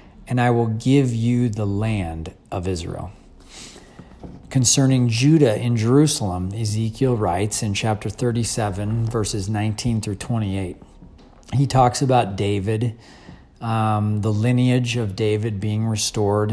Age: 40-59